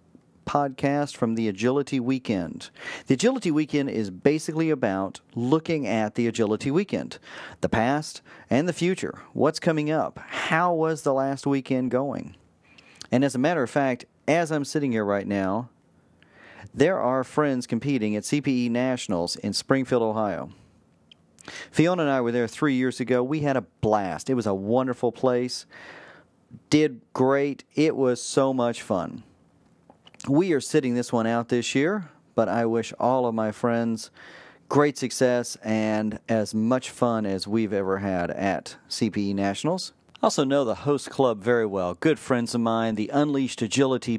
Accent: American